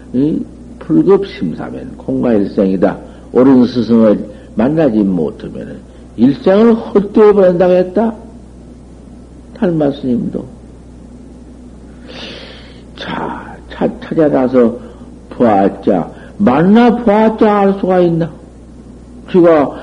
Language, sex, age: Korean, male, 60-79